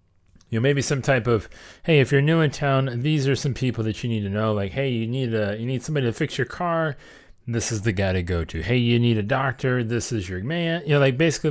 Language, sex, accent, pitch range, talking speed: English, male, American, 95-130 Hz, 275 wpm